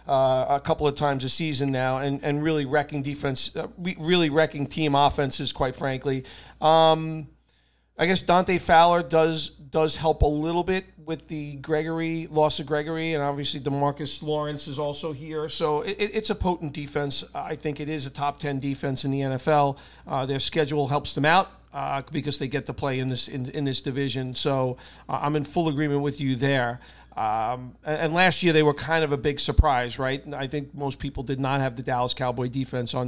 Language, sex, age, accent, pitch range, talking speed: English, male, 40-59, American, 135-155 Hz, 205 wpm